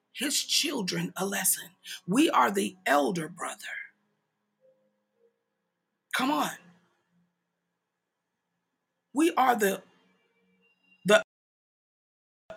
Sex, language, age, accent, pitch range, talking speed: female, English, 40-59, American, 175-220 Hz, 70 wpm